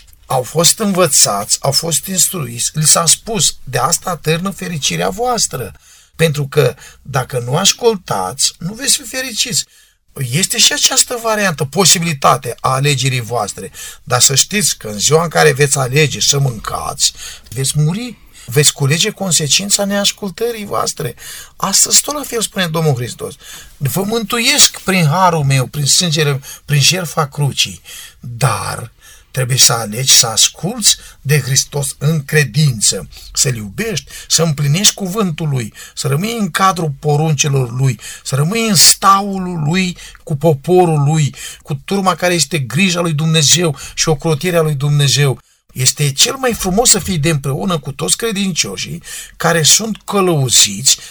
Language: Romanian